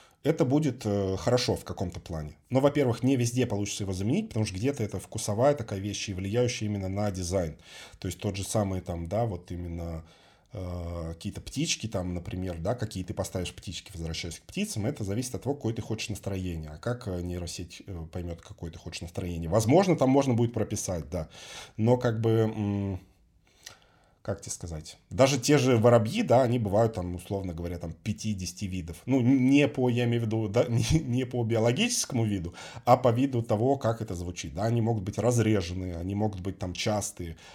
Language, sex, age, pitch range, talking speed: Russian, male, 20-39, 90-120 Hz, 190 wpm